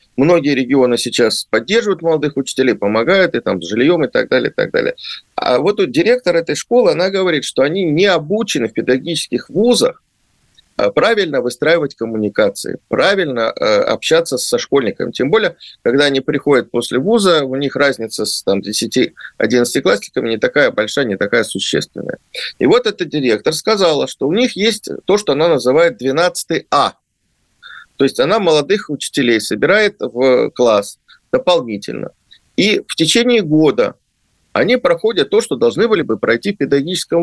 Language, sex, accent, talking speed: Russian, male, native, 155 wpm